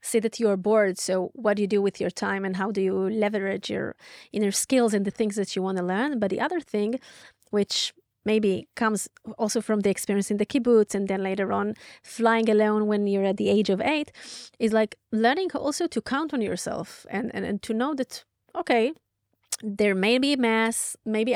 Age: 20-39